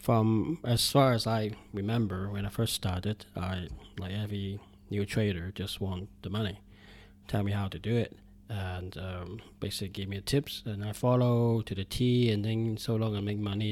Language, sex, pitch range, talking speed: English, male, 100-120 Hz, 190 wpm